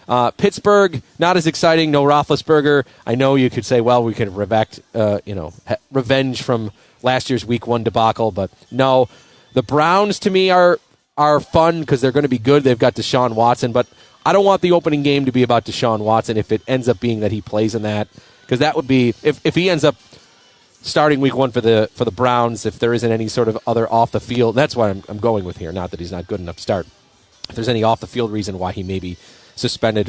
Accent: American